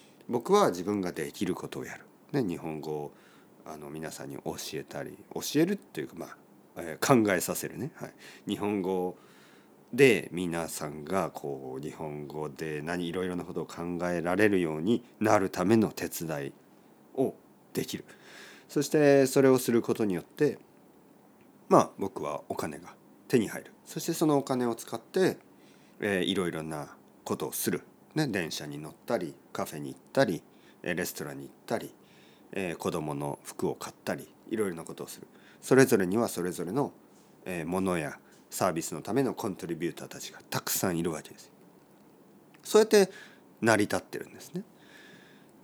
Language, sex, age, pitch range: Japanese, male, 40-59, 85-130 Hz